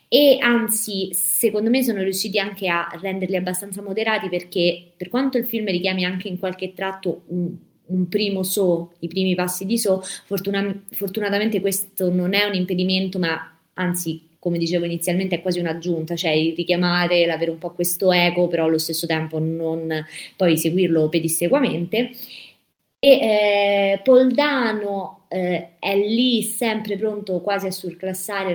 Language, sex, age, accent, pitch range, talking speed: Italian, female, 20-39, native, 170-195 Hz, 145 wpm